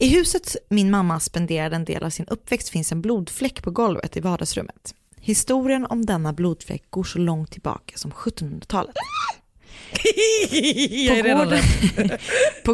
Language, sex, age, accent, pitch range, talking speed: Swedish, female, 30-49, native, 170-225 Hz, 135 wpm